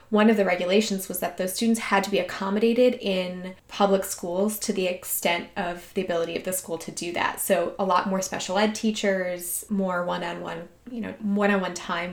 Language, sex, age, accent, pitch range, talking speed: English, female, 20-39, American, 185-220 Hz, 200 wpm